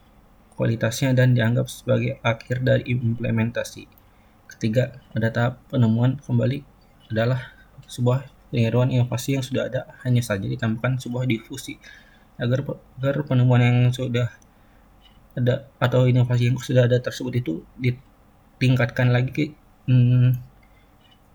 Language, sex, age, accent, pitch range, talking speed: Indonesian, male, 20-39, native, 115-130 Hz, 115 wpm